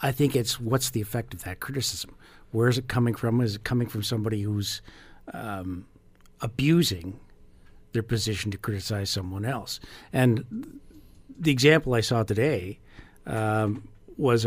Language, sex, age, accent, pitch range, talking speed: English, male, 50-69, American, 105-125 Hz, 150 wpm